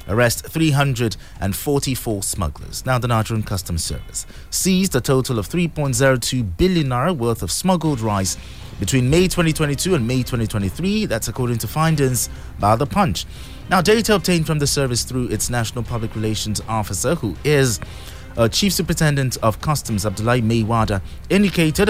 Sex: male